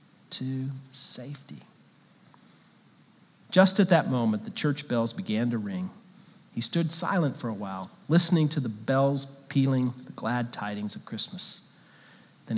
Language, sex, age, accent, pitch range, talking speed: English, male, 50-69, American, 120-165 Hz, 140 wpm